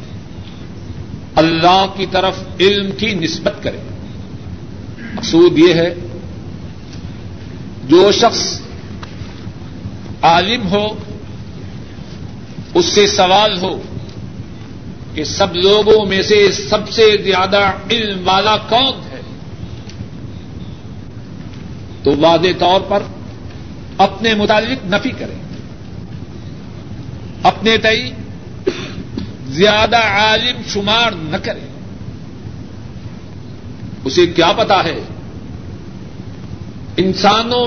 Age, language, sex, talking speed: 60-79, Urdu, male, 80 wpm